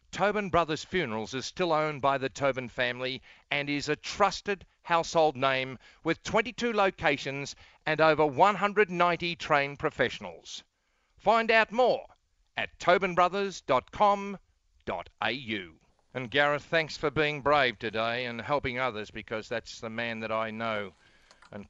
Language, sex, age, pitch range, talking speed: English, male, 50-69, 120-165 Hz, 130 wpm